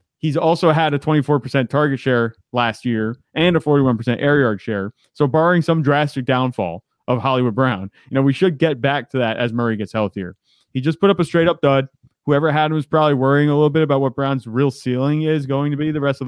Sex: male